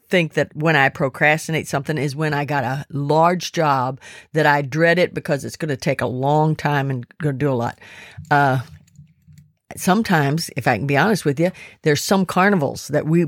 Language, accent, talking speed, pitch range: English, American, 205 wpm, 145-180 Hz